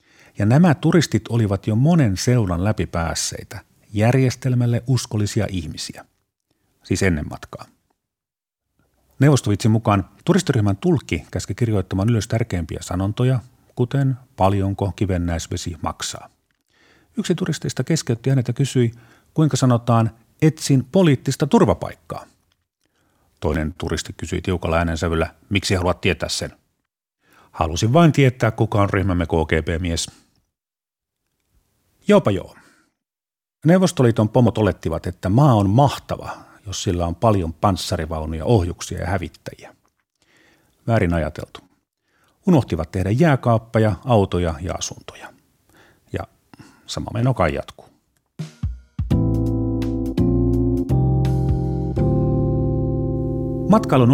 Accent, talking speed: native, 95 wpm